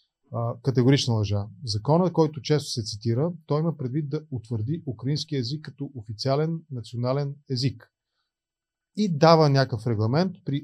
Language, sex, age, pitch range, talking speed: Bulgarian, male, 30-49, 115-145 Hz, 130 wpm